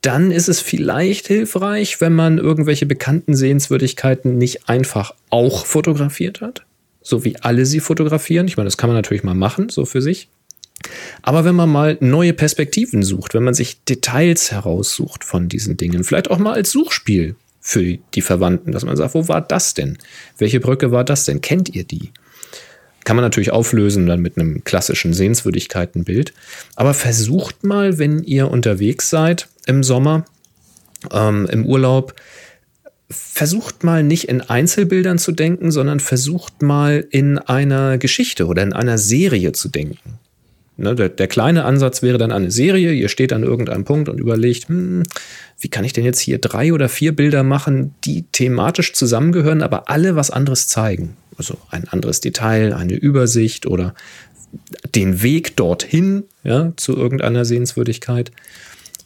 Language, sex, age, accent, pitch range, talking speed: German, male, 40-59, German, 115-160 Hz, 160 wpm